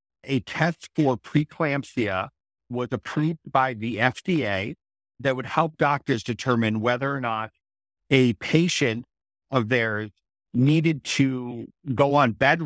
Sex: male